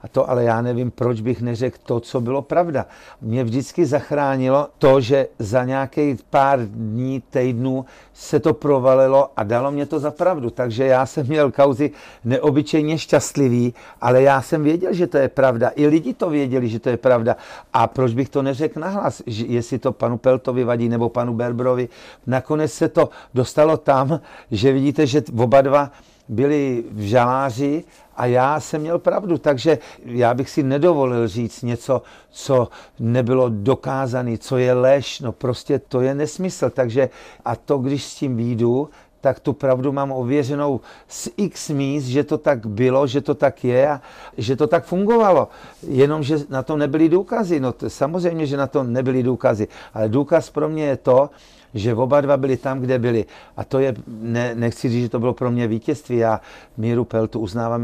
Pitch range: 120-145 Hz